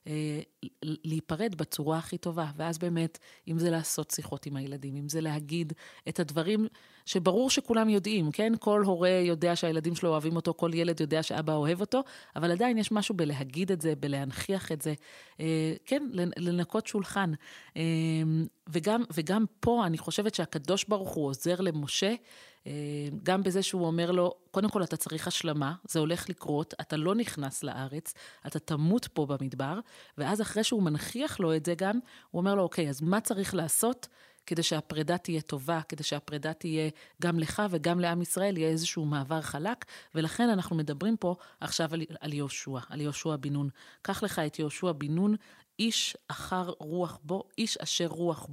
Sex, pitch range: female, 155-195 Hz